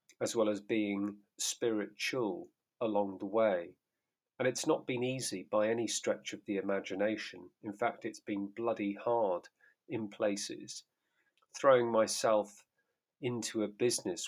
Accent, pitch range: British, 100-120 Hz